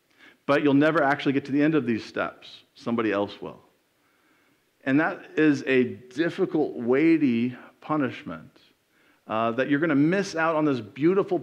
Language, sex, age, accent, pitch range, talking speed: English, male, 40-59, American, 125-175 Hz, 165 wpm